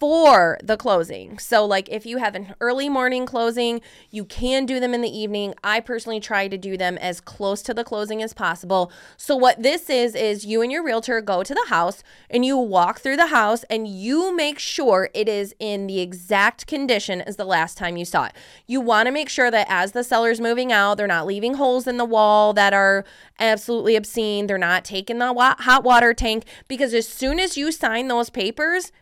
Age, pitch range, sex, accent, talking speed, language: 20-39, 200-250 Hz, female, American, 215 wpm, English